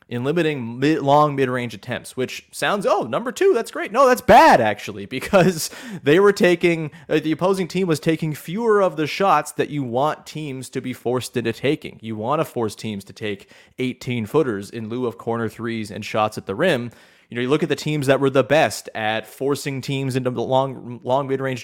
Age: 30-49